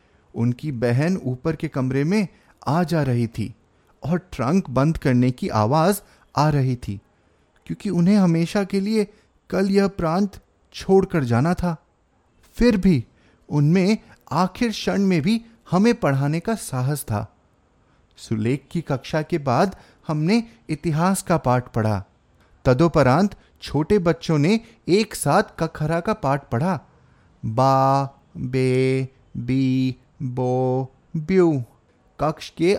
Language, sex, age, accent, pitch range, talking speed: Hindi, male, 30-49, native, 130-185 Hz, 125 wpm